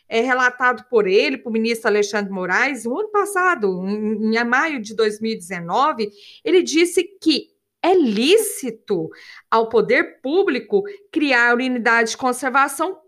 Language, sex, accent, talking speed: Portuguese, female, Brazilian, 130 wpm